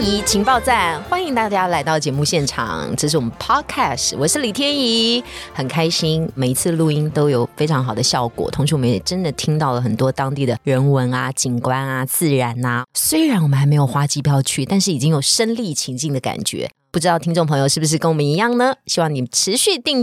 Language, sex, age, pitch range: Chinese, female, 20-39, 130-180 Hz